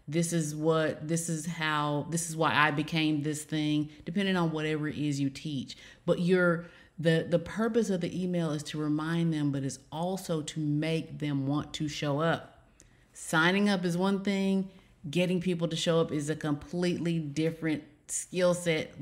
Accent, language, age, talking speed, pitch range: American, English, 30-49, 185 wpm, 145-175 Hz